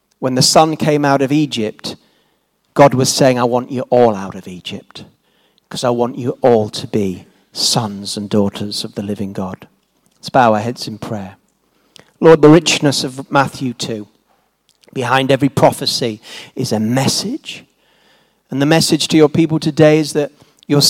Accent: British